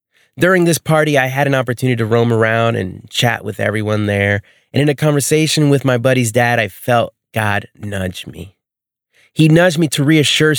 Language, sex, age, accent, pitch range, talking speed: English, male, 30-49, American, 115-145 Hz, 185 wpm